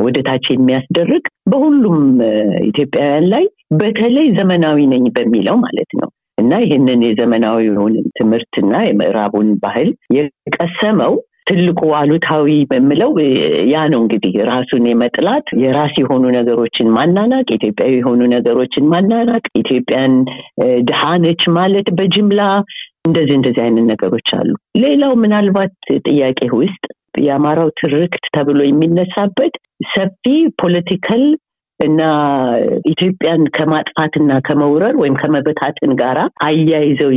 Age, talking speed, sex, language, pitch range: 60-79, 100 wpm, female, Amharic, 125-180 Hz